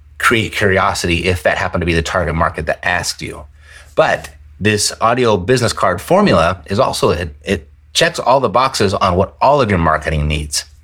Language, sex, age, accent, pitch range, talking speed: English, male, 30-49, American, 75-110 Hz, 190 wpm